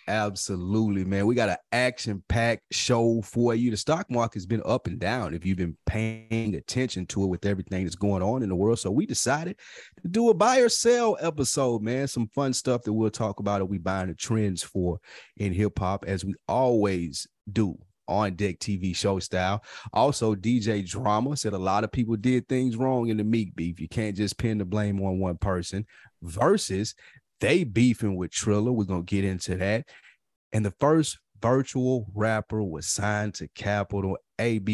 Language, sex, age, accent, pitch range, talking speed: English, male, 30-49, American, 100-130 Hz, 190 wpm